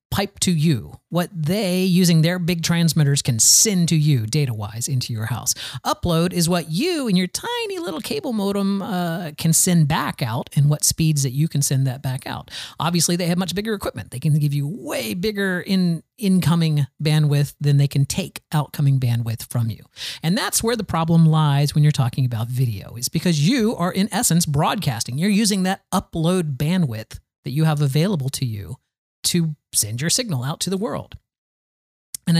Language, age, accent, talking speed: English, 40-59, American, 190 wpm